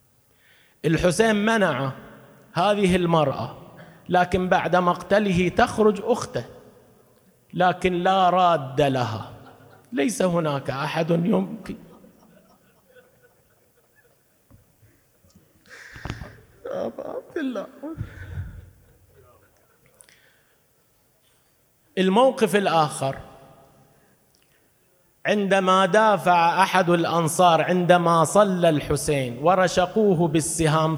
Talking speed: 55 wpm